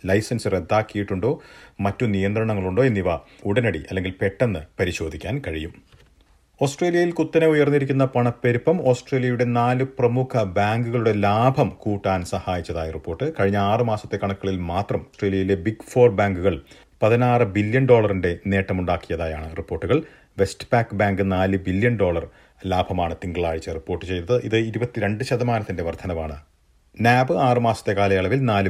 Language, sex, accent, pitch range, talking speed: Malayalam, male, native, 90-120 Hz, 105 wpm